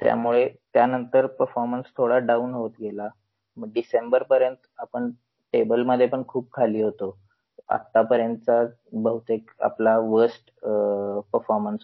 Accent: native